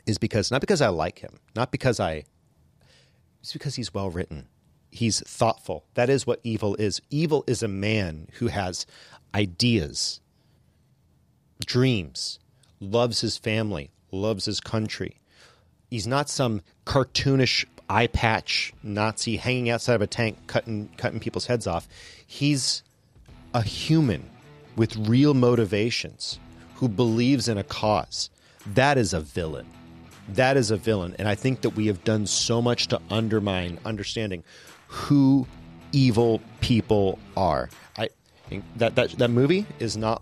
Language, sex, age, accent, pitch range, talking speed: English, male, 40-59, American, 100-120 Hz, 140 wpm